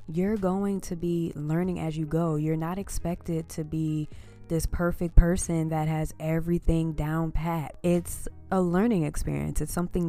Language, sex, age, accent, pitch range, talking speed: English, female, 20-39, American, 150-175 Hz, 160 wpm